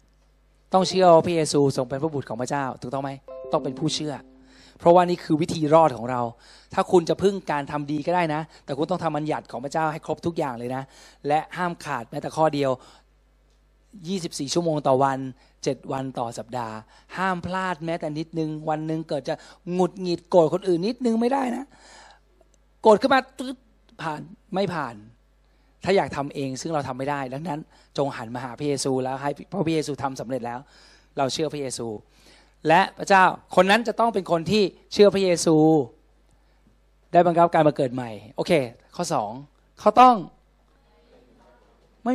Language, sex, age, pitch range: Thai, male, 20-39, 135-180 Hz